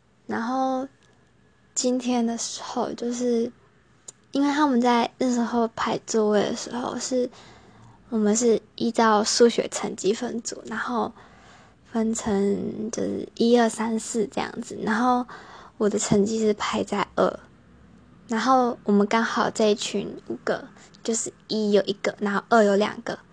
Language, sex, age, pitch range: English, female, 10-29, 210-245 Hz